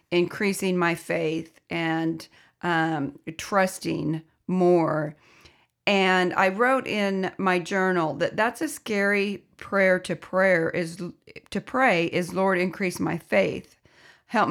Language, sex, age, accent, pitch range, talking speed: English, female, 40-59, American, 170-210 Hz, 120 wpm